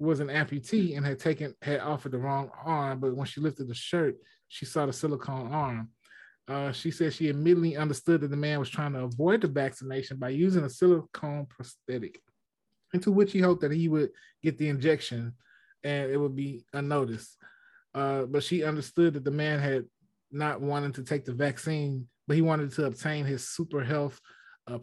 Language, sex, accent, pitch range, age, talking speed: English, male, American, 130-155 Hz, 20-39, 195 wpm